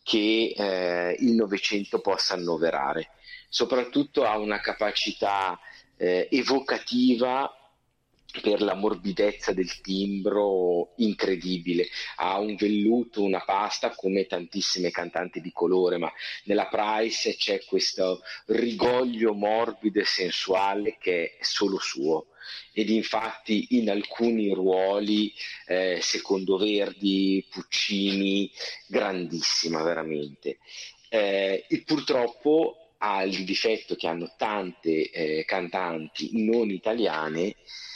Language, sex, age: Italian, male, 40-59